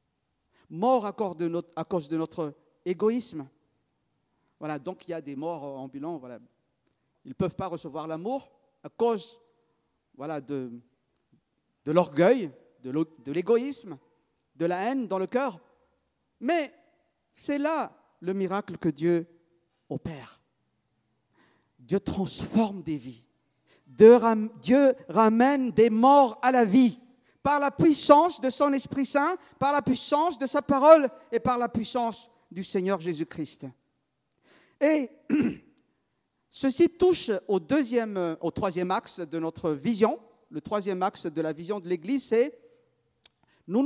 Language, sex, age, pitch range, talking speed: French, male, 50-69, 170-260 Hz, 130 wpm